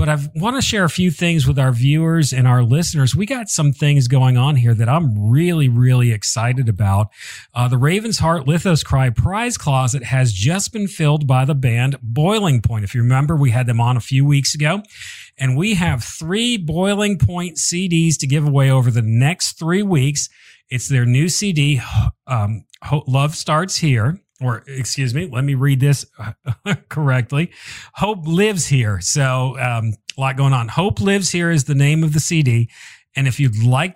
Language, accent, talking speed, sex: English, American, 190 wpm, male